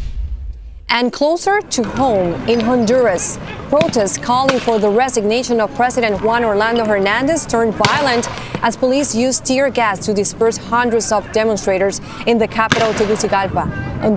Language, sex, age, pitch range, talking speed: English, female, 30-49, 195-240 Hz, 140 wpm